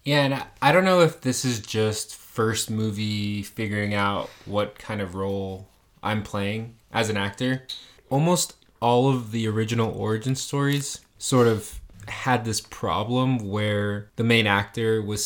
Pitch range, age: 100-120 Hz, 20-39